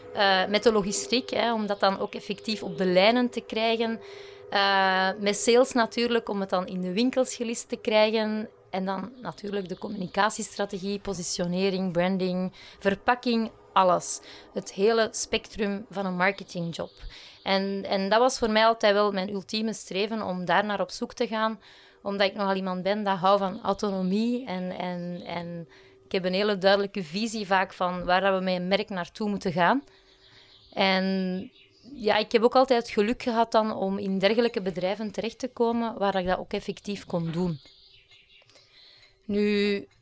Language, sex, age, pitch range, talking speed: Dutch, female, 20-39, 190-225 Hz, 170 wpm